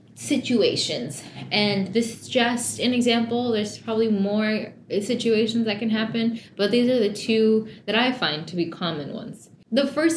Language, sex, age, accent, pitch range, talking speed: English, female, 10-29, American, 190-230 Hz, 165 wpm